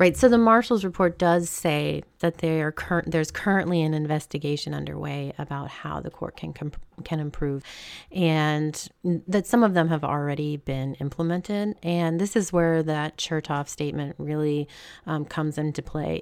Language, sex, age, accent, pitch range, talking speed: English, female, 30-49, American, 145-175 Hz, 165 wpm